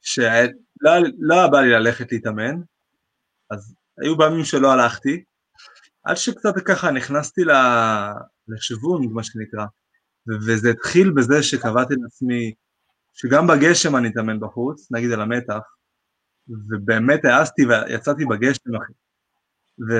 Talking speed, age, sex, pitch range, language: 115 wpm, 20-39, male, 120-175 Hz, Hebrew